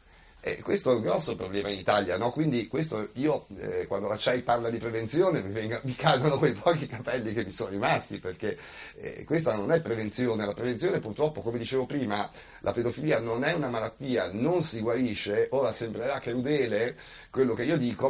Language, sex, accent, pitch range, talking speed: Italian, male, native, 105-150 Hz, 190 wpm